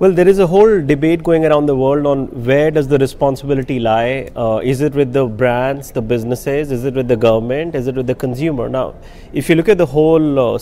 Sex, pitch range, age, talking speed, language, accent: male, 135-160 Hz, 30-49, 235 wpm, English, Indian